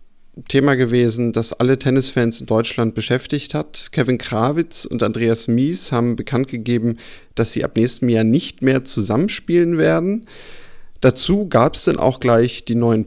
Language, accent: German, German